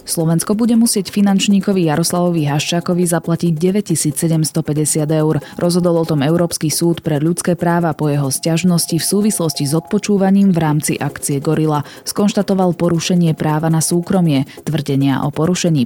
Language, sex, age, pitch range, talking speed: Slovak, female, 20-39, 150-180 Hz, 135 wpm